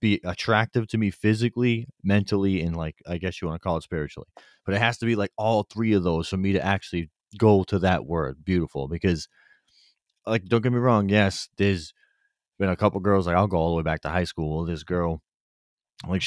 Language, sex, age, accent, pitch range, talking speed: English, male, 30-49, American, 85-105 Hz, 220 wpm